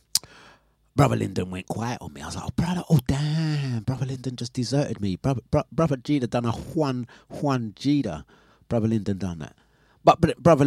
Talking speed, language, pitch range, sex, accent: 190 wpm, English, 100-145 Hz, male, British